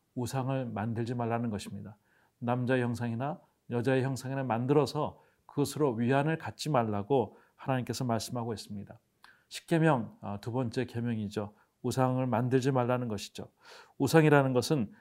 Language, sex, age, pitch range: Korean, male, 40-59, 120-145 Hz